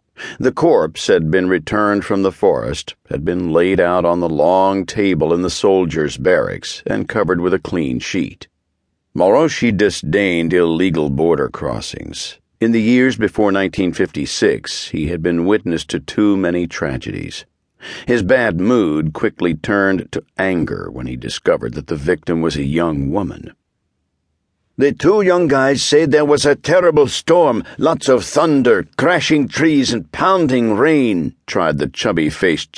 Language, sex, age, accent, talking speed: English, male, 60-79, American, 150 wpm